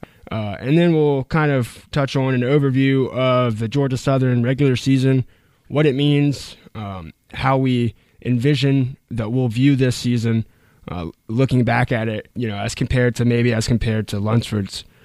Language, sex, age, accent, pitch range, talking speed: English, male, 20-39, American, 115-140 Hz, 170 wpm